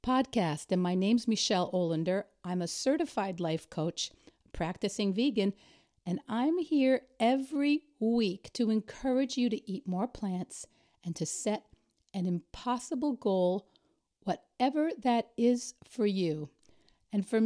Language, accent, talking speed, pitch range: English, American, 130 wpm, 180-245 Hz